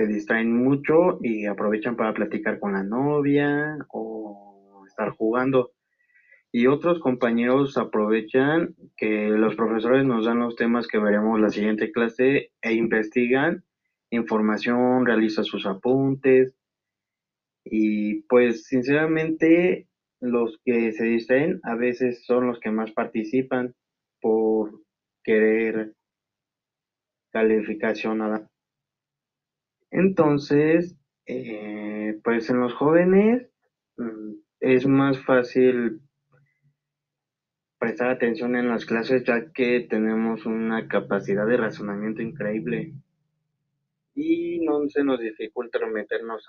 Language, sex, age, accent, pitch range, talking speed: Spanish, male, 20-39, Mexican, 110-145 Hz, 105 wpm